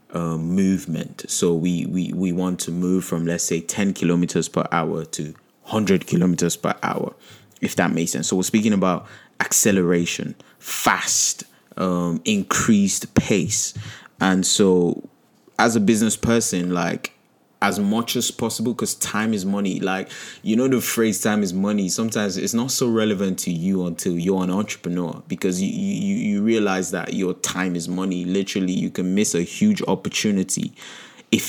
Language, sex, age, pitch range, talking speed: English, male, 20-39, 90-105 Hz, 165 wpm